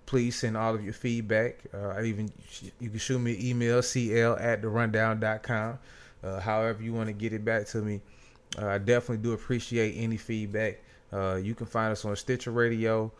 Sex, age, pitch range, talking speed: male, 20-39, 110-125 Hz, 205 wpm